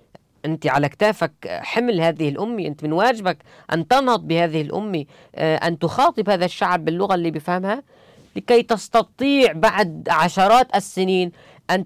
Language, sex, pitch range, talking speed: Arabic, female, 150-215 Hz, 130 wpm